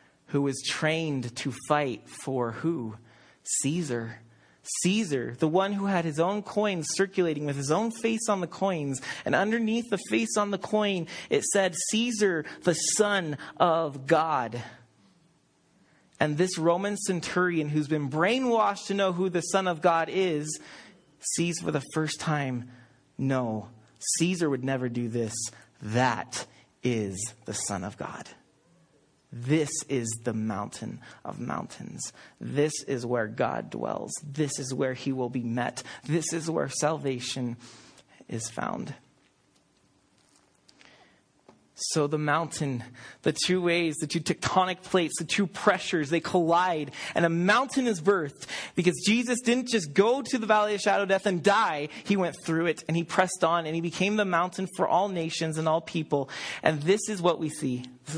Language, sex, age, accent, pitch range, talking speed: English, male, 30-49, American, 135-190 Hz, 160 wpm